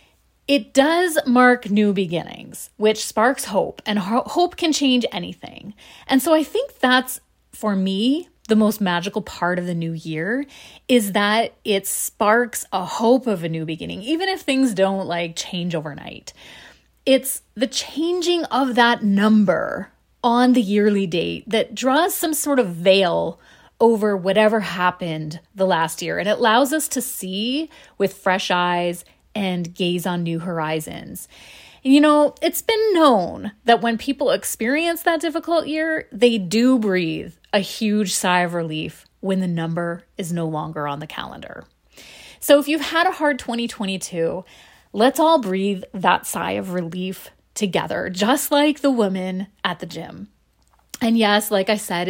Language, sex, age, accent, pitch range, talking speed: English, female, 30-49, American, 185-270 Hz, 160 wpm